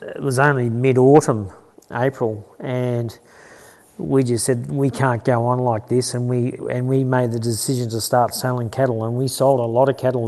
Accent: Australian